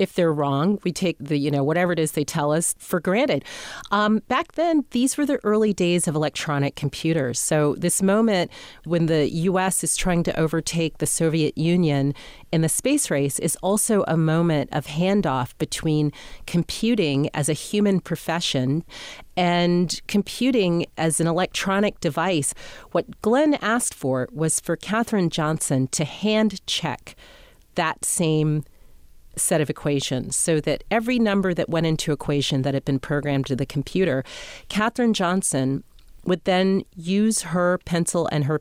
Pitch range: 145-190 Hz